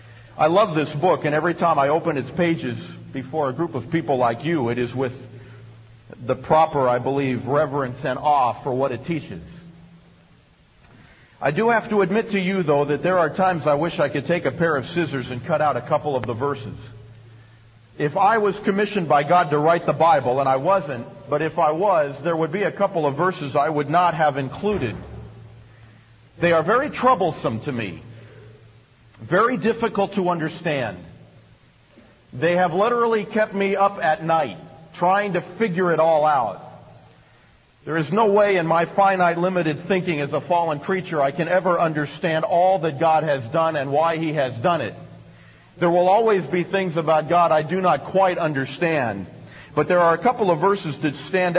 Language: English